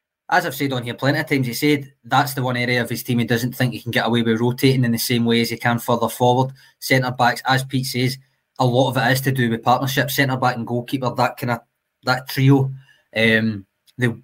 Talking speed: 255 wpm